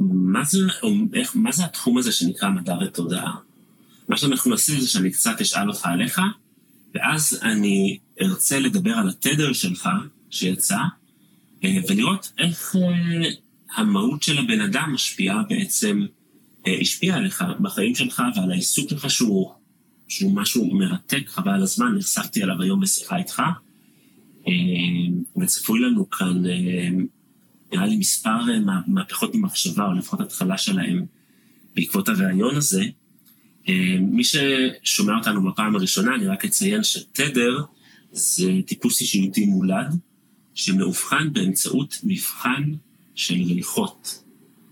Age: 30-49